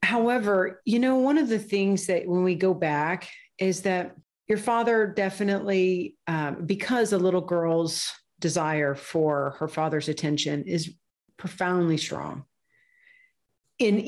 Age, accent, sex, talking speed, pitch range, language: 40-59, American, female, 130 wpm, 160-195 Hz, English